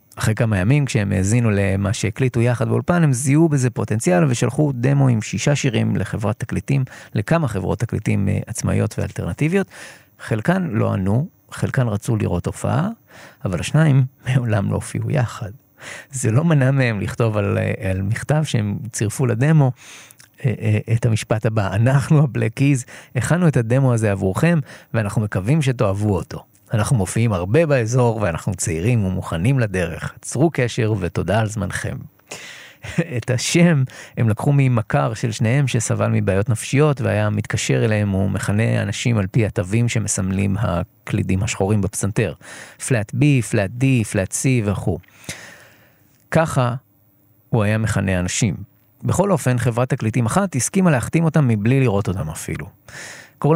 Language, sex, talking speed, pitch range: Hebrew, male, 140 wpm, 105-135 Hz